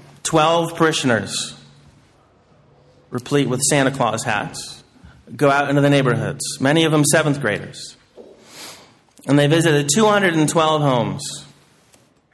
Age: 30-49